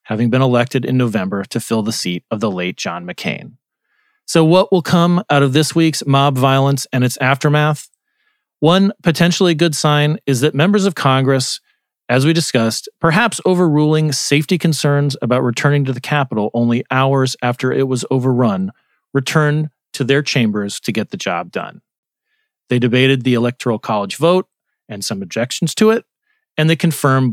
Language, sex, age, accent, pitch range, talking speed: English, male, 40-59, American, 125-170 Hz, 170 wpm